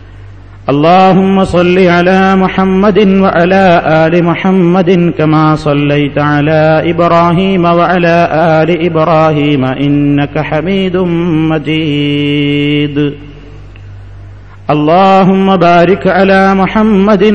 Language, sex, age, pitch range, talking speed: Malayalam, male, 50-69, 145-180 Hz, 75 wpm